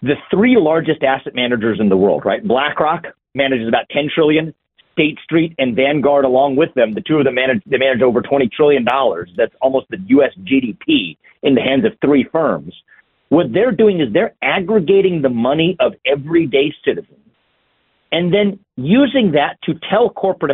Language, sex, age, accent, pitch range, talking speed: English, male, 50-69, American, 145-200 Hz, 175 wpm